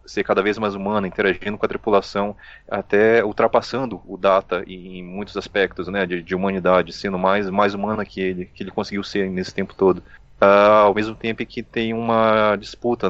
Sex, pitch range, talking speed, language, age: male, 95-110 Hz, 190 wpm, Portuguese, 20-39